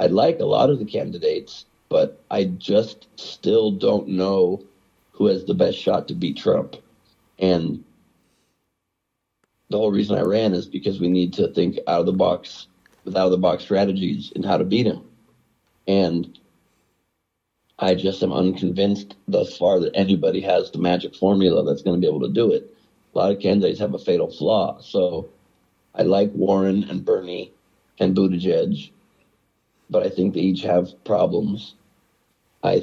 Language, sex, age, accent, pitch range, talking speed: English, male, 50-69, American, 90-100 Hz, 170 wpm